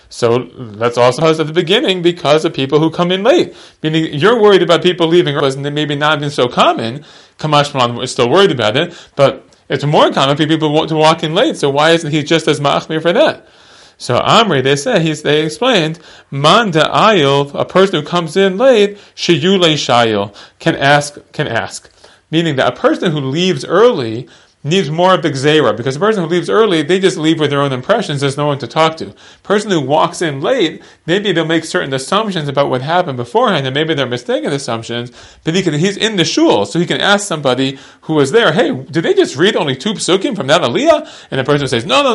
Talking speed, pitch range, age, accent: 220 wpm, 140-180 Hz, 30-49, American